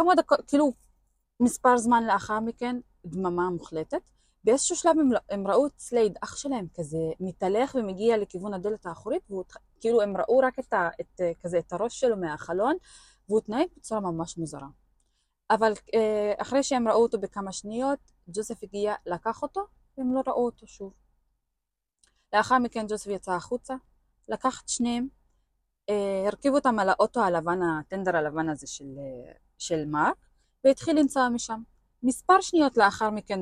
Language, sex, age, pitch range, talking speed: Hebrew, female, 20-39, 185-255 Hz, 155 wpm